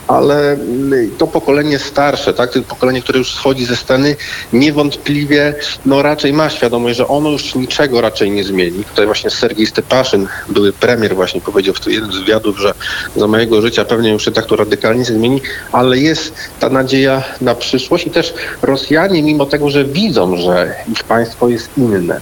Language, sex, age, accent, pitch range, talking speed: Polish, male, 40-59, native, 120-145 Hz, 180 wpm